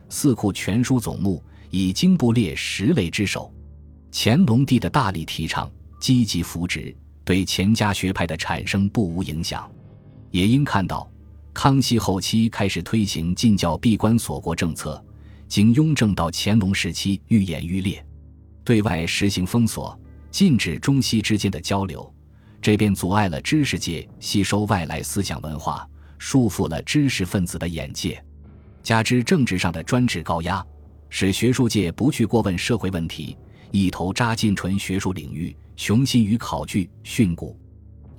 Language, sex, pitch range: Chinese, male, 85-115 Hz